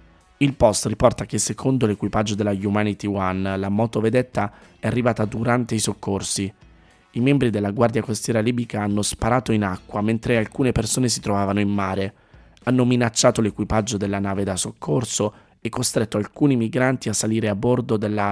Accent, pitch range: native, 100-115 Hz